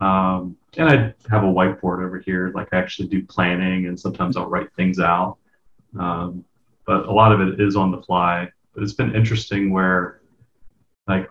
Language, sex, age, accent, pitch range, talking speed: English, male, 30-49, American, 95-110 Hz, 185 wpm